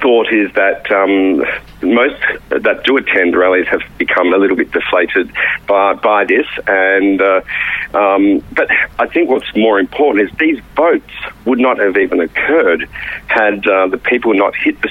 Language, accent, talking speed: English, Australian, 170 wpm